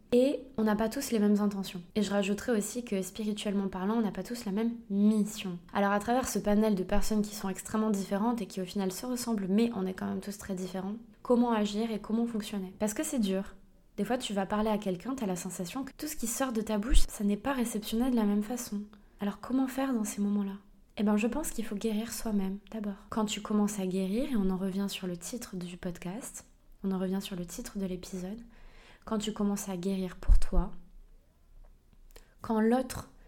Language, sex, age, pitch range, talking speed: French, female, 20-39, 195-230 Hz, 235 wpm